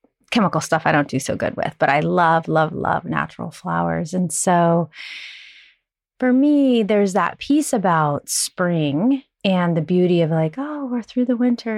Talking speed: 175 wpm